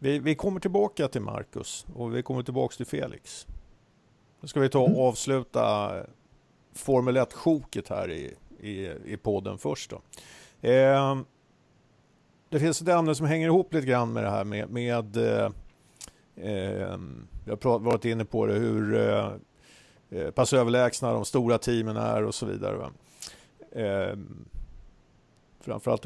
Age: 50-69